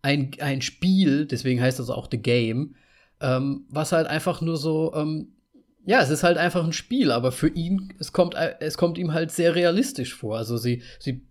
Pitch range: 135-180 Hz